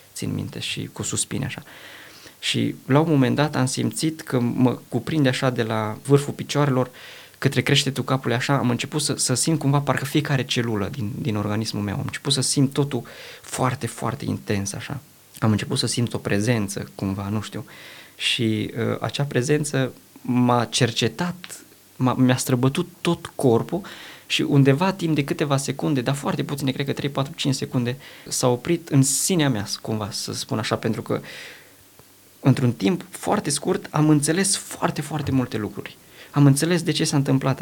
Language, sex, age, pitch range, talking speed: Romanian, male, 20-39, 115-145 Hz, 170 wpm